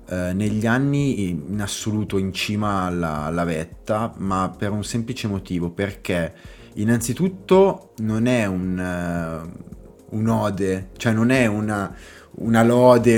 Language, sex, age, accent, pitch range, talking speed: Italian, male, 20-39, native, 95-115 Hz, 120 wpm